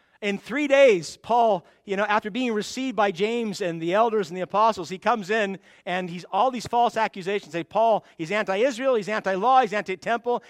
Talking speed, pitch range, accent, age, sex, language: 195 wpm, 160-235 Hz, American, 50-69, male, English